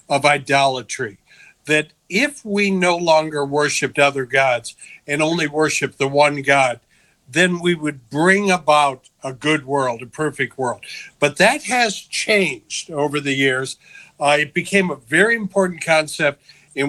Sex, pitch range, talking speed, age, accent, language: male, 140-175 Hz, 150 wpm, 60-79, American, English